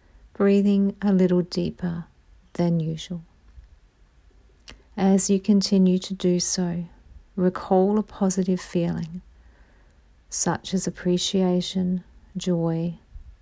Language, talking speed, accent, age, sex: English, 90 wpm, Australian, 50-69, female